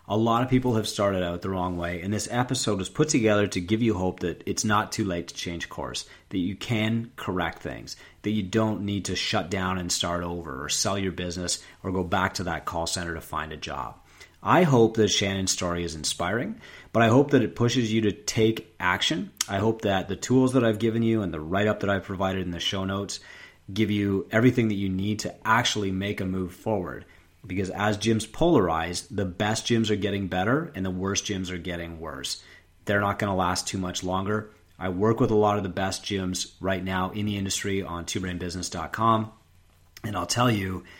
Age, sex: 30-49, male